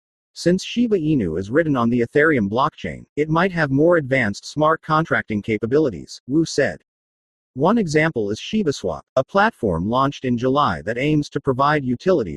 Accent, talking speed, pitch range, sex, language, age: American, 160 wpm, 120-160 Hz, male, English, 40-59